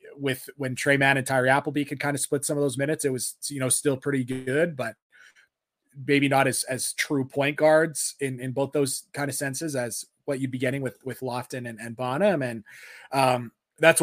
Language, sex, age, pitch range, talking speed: English, male, 20-39, 125-145 Hz, 220 wpm